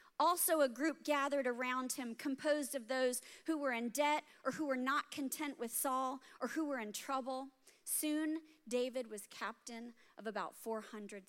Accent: American